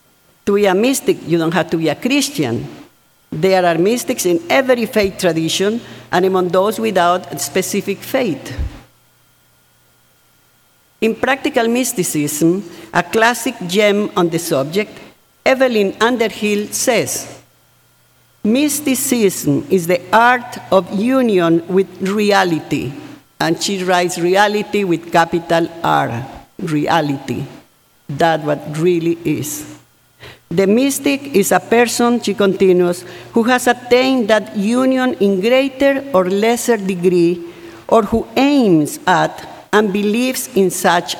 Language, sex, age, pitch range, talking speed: English, female, 50-69, 165-225 Hz, 120 wpm